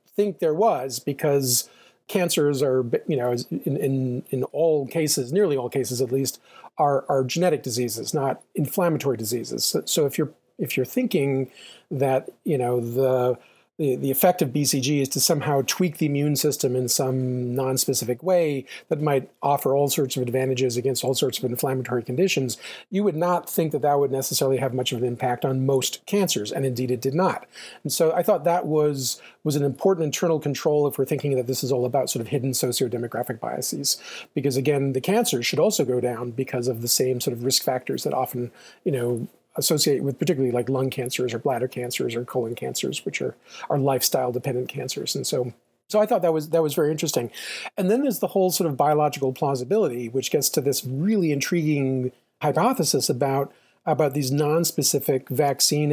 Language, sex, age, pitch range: English, male, 40-59, 125-155 Hz